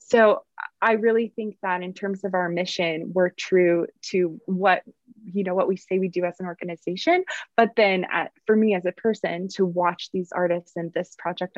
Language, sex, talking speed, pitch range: English, female, 200 wpm, 175-200 Hz